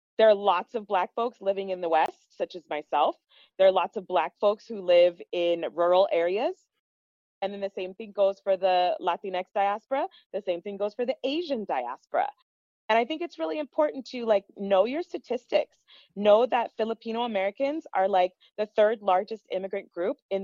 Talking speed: 190 wpm